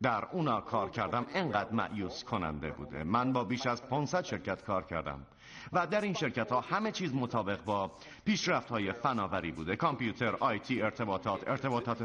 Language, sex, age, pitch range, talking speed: Persian, male, 50-69, 105-155 Hz, 170 wpm